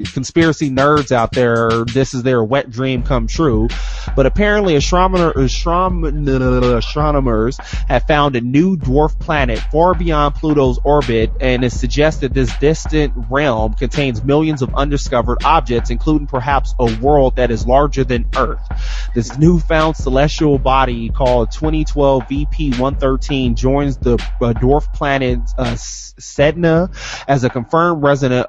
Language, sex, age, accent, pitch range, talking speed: English, male, 20-39, American, 120-140 Hz, 145 wpm